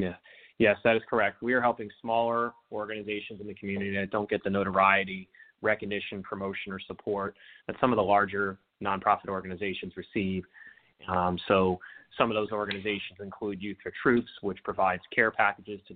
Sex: male